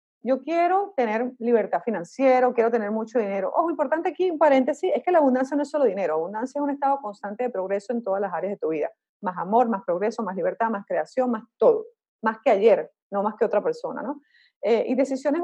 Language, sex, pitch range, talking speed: Spanish, female, 220-300 Hz, 235 wpm